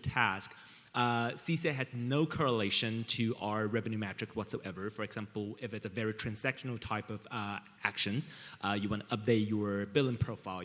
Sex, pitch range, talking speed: male, 110-135 Hz, 170 wpm